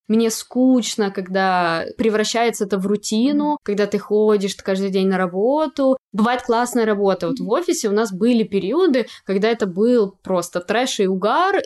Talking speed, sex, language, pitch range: 160 wpm, female, Russian, 190-235 Hz